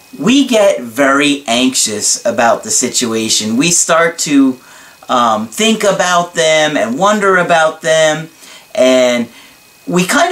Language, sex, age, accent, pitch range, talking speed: English, male, 40-59, American, 130-190 Hz, 120 wpm